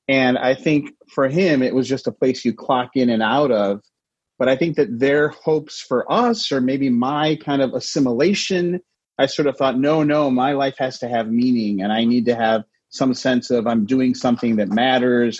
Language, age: English, 30-49